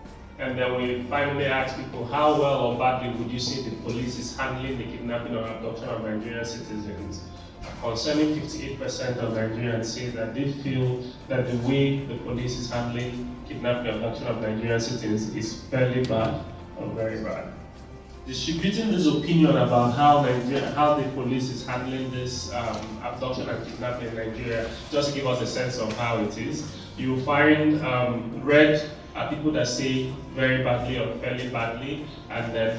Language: English